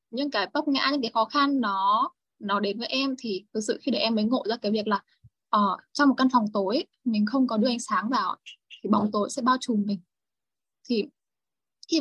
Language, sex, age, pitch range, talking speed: Vietnamese, female, 10-29, 215-265 Hz, 235 wpm